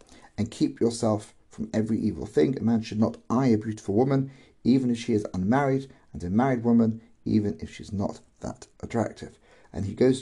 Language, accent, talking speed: English, British, 195 wpm